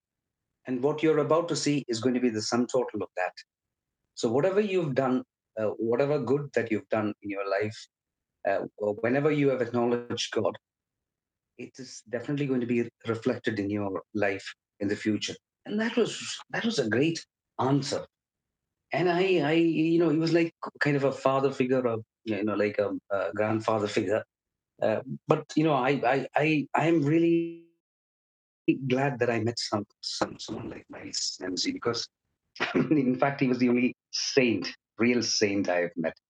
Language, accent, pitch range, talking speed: English, Indian, 105-140 Hz, 180 wpm